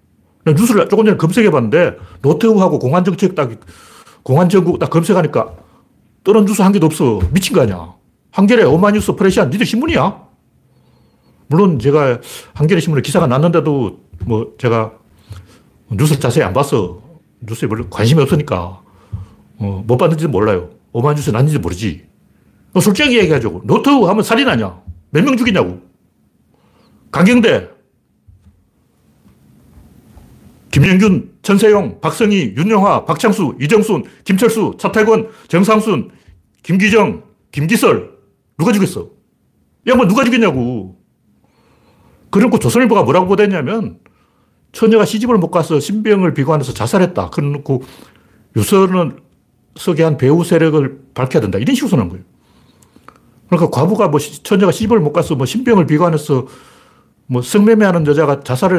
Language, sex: Korean, male